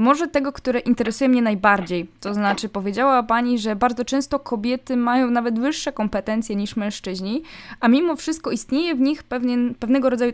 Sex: female